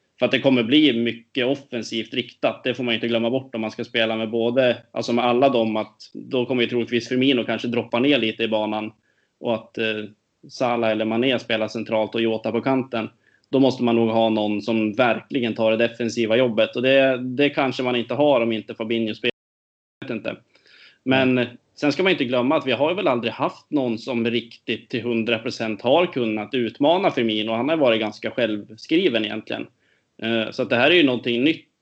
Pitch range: 110-125 Hz